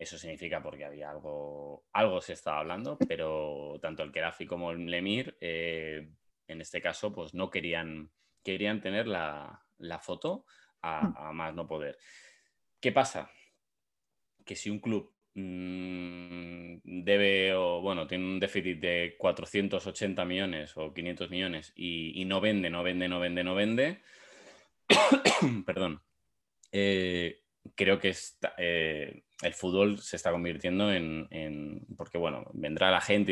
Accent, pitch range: Spanish, 85-100 Hz